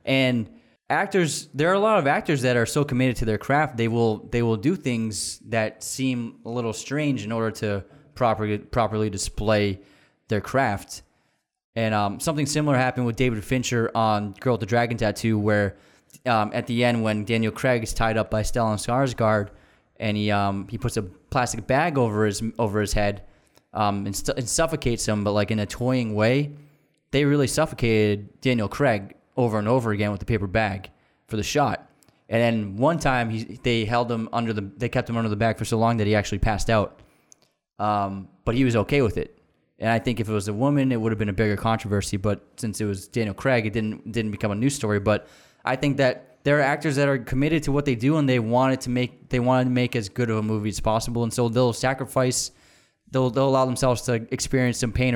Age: 20-39